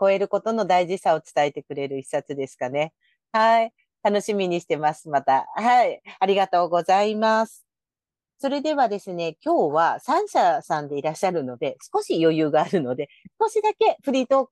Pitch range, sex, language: 155-240 Hz, female, Japanese